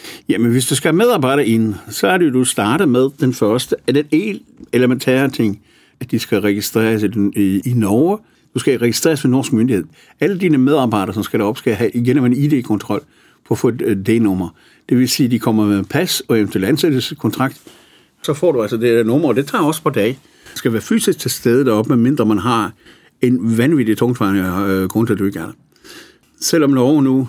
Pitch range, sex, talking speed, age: 105-130 Hz, male, 200 wpm, 60-79